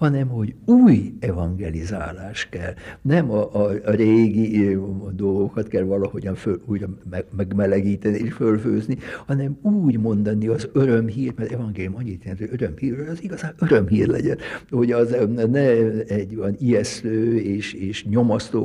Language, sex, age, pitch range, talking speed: Hungarian, male, 60-79, 100-125 Hz, 135 wpm